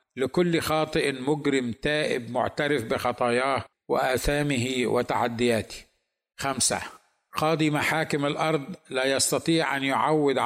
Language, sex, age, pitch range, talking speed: Arabic, male, 50-69, 125-150 Hz, 90 wpm